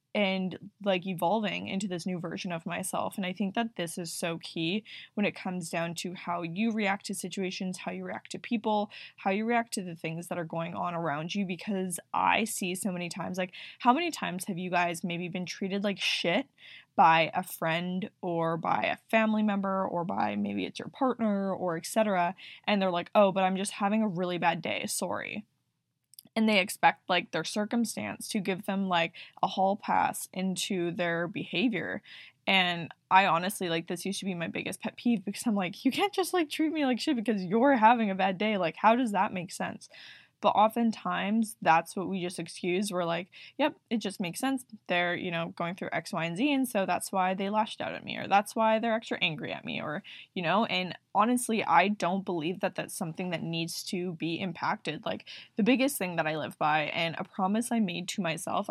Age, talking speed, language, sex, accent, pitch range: 10-29, 220 wpm, English, female, American, 175-215 Hz